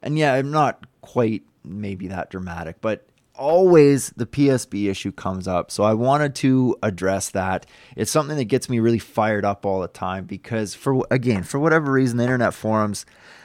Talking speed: 185 wpm